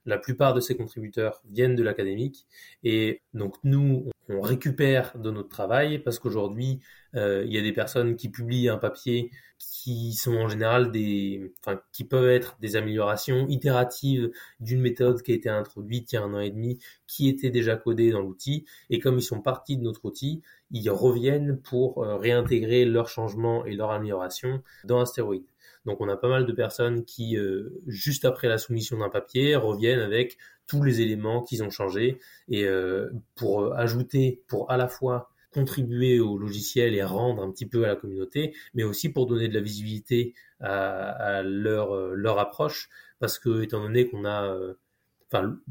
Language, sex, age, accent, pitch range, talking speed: French, male, 20-39, French, 105-125 Hz, 185 wpm